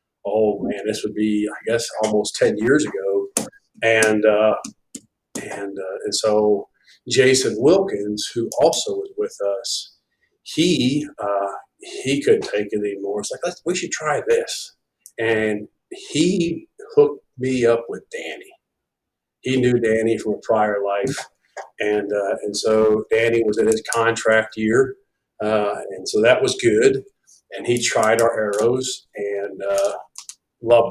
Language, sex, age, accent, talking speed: English, male, 50-69, American, 150 wpm